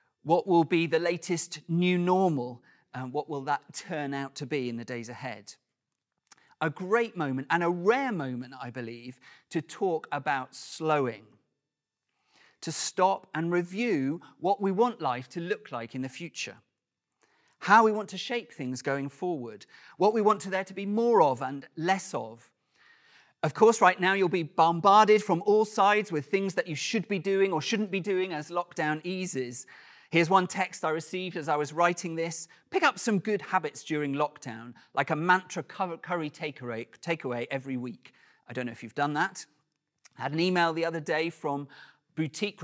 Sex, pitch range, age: male, 140-190 Hz, 40-59